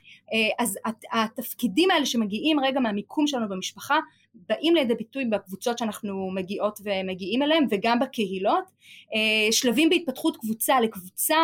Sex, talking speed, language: female, 115 wpm, Hebrew